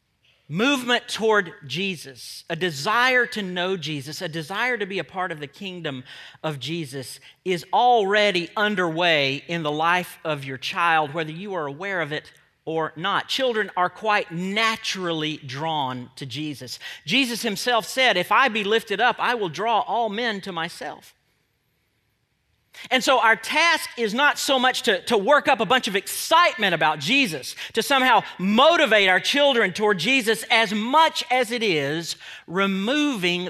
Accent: American